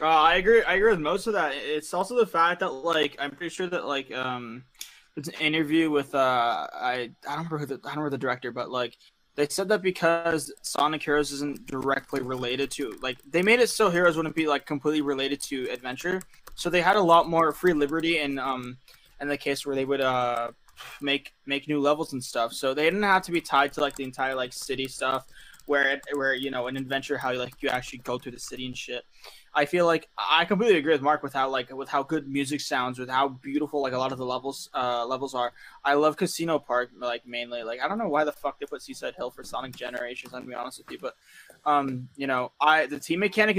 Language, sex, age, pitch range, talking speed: English, male, 20-39, 130-155 Hz, 245 wpm